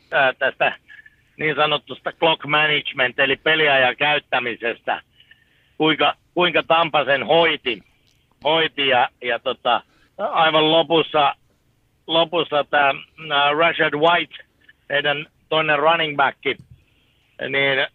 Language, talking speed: Finnish, 95 wpm